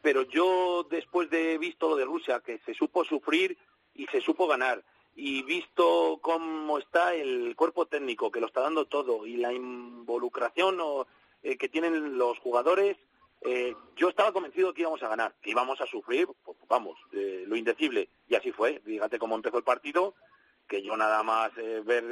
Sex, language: male, Spanish